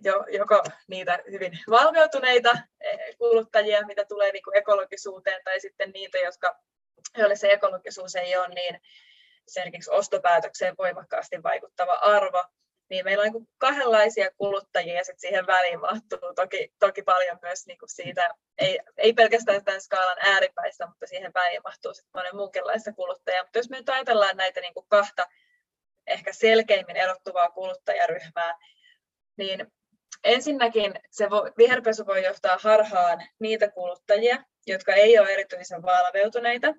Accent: Finnish